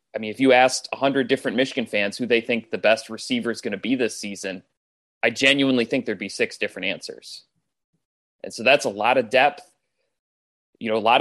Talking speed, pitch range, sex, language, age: 215 wpm, 110-135 Hz, male, English, 20-39